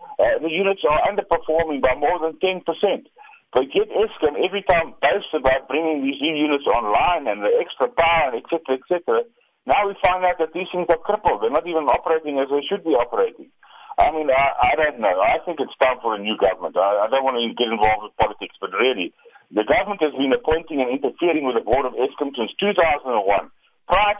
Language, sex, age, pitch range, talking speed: English, male, 50-69, 130-200 Hz, 215 wpm